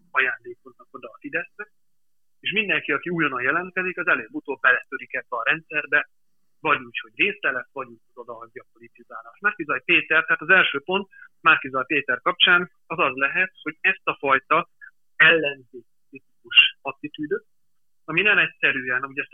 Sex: male